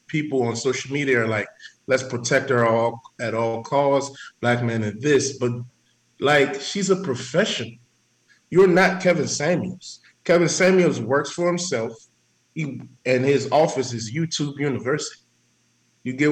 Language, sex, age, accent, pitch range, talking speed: English, male, 20-39, American, 115-145 Hz, 145 wpm